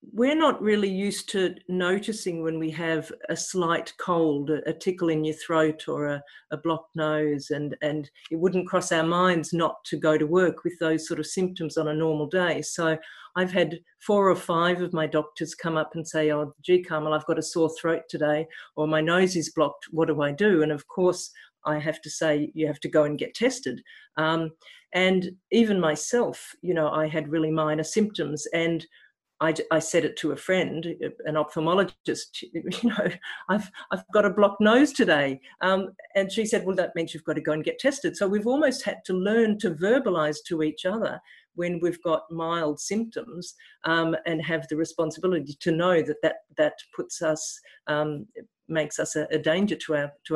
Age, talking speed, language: 50-69, 200 wpm, English